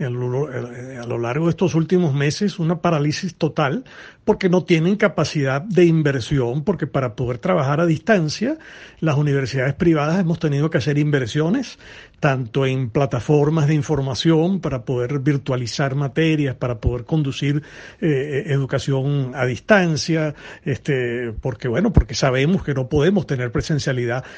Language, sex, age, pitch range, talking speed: Spanish, male, 60-79, 135-180 Hz, 140 wpm